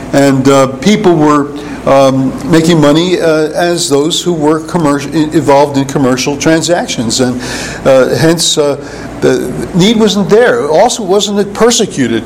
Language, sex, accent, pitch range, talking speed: English, male, American, 135-165 Hz, 135 wpm